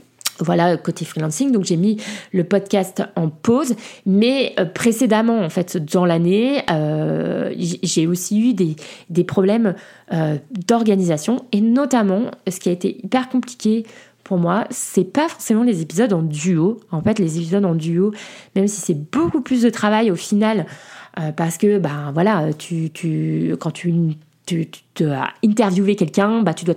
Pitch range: 165-210 Hz